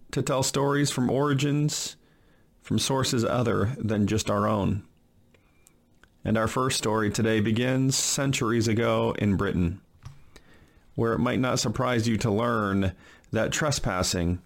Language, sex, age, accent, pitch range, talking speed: English, male, 40-59, American, 100-130 Hz, 135 wpm